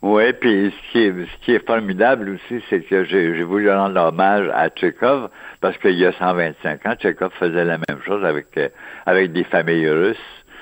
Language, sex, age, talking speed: French, male, 60-79, 185 wpm